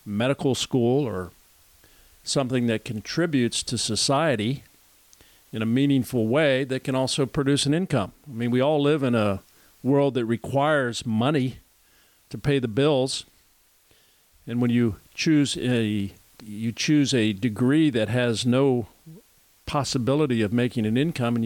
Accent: American